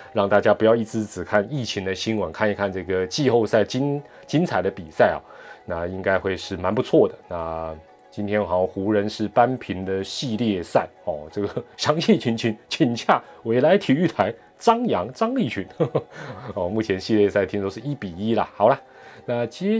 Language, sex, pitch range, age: Chinese, male, 100-125 Hz, 30-49